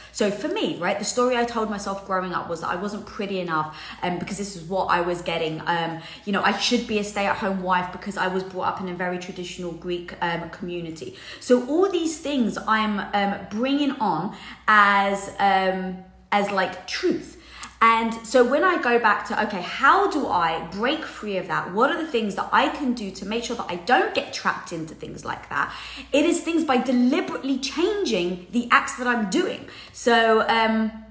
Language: English